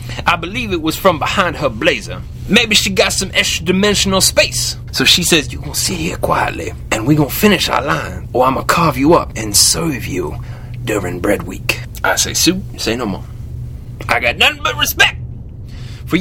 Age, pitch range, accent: 30-49, 120-185 Hz, American